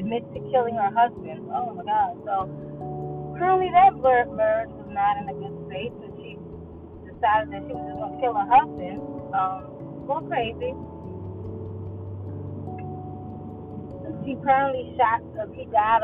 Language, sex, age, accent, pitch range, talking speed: English, female, 20-39, American, 185-290 Hz, 145 wpm